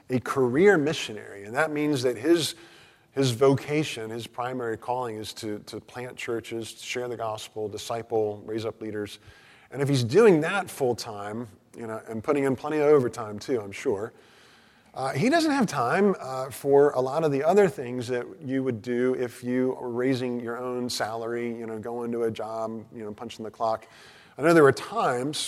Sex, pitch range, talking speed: male, 110-135 Hz, 200 wpm